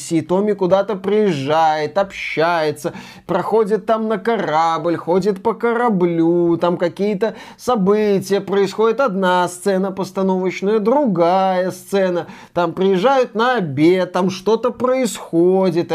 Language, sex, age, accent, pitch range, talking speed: Russian, male, 20-39, native, 165-230 Hz, 100 wpm